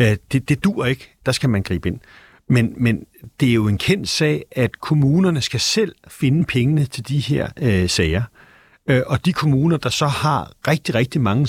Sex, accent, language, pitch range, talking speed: male, native, Danish, 115-145 Hz, 200 wpm